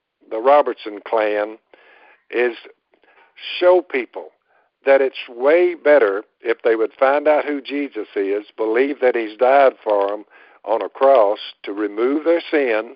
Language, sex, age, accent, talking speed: English, male, 60-79, American, 145 wpm